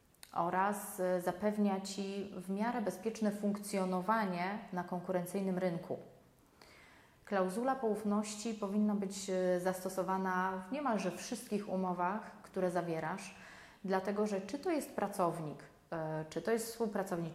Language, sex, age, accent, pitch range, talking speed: Polish, female, 30-49, native, 180-215 Hz, 105 wpm